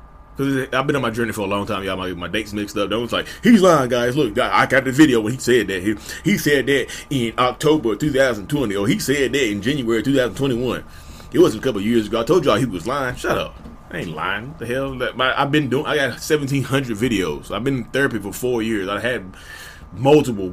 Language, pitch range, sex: English, 105-135 Hz, male